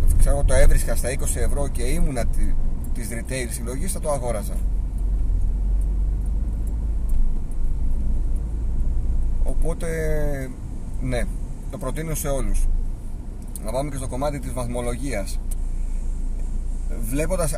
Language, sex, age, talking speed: Greek, male, 30-49, 100 wpm